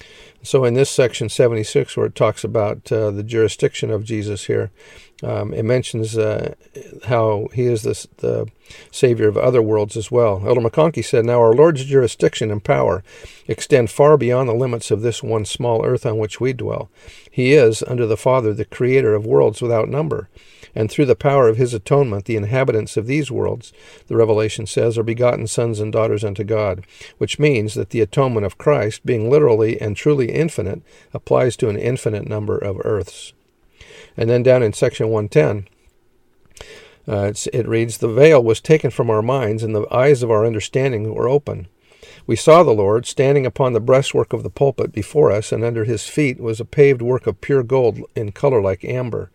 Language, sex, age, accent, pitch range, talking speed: English, male, 50-69, American, 110-130 Hz, 190 wpm